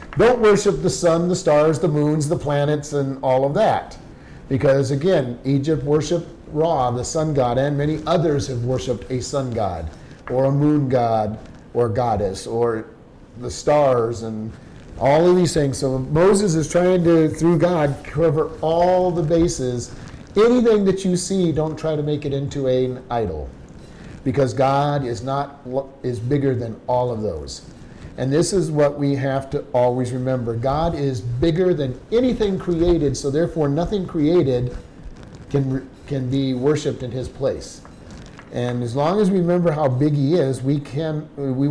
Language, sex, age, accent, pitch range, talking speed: English, male, 40-59, American, 130-165 Hz, 165 wpm